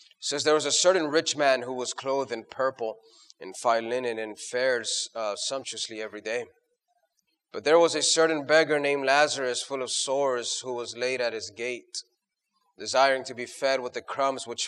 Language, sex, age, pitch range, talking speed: English, male, 30-49, 125-165 Hz, 190 wpm